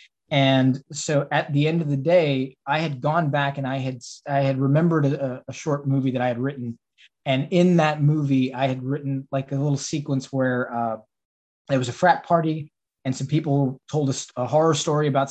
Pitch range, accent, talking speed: 135-150 Hz, American, 215 wpm